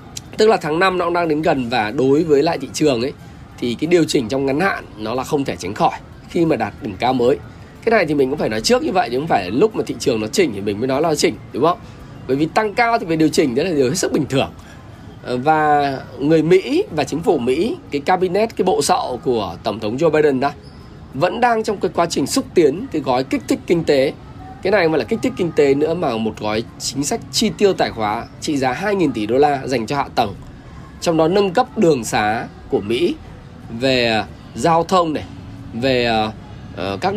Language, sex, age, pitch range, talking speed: Vietnamese, male, 20-39, 125-185 Hz, 245 wpm